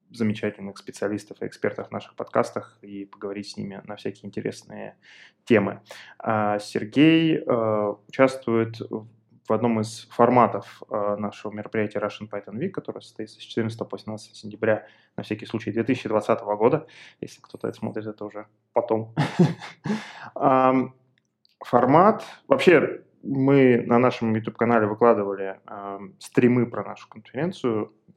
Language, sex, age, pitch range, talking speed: Russian, male, 20-39, 105-125 Hz, 115 wpm